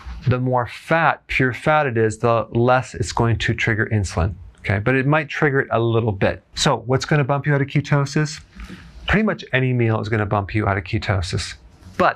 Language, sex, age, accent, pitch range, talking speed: English, male, 40-59, American, 105-135 Hz, 220 wpm